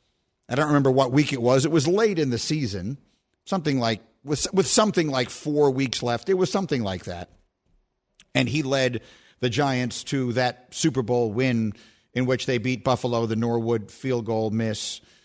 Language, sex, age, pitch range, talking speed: English, male, 50-69, 120-170 Hz, 185 wpm